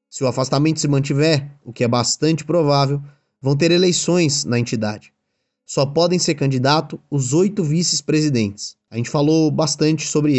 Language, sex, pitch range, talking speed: Portuguese, male, 130-160 Hz, 155 wpm